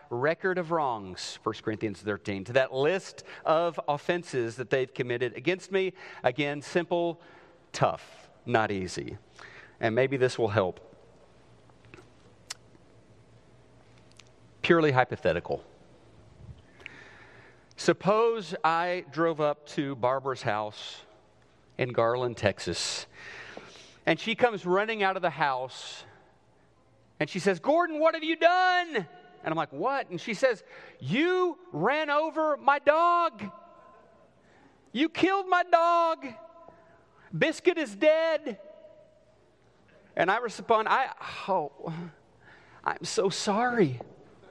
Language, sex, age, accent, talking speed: English, male, 40-59, American, 110 wpm